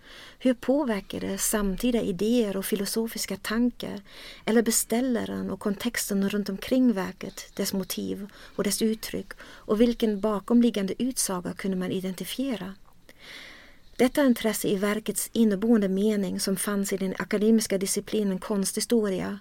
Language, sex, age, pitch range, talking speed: Swedish, female, 40-59, 195-225 Hz, 120 wpm